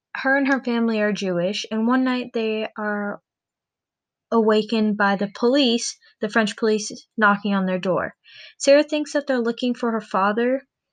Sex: female